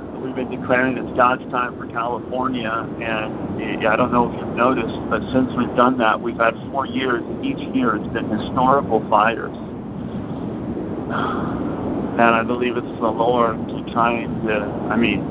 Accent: American